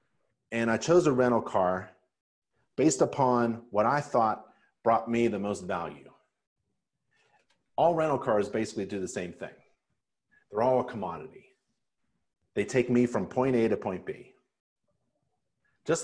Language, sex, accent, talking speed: English, male, American, 140 wpm